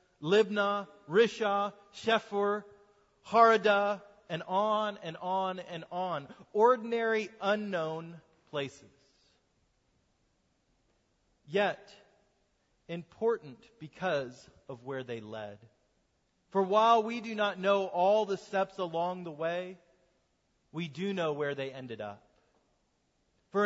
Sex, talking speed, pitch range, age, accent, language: male, 100 wpm, 180-220 Hz, 30-49, American, English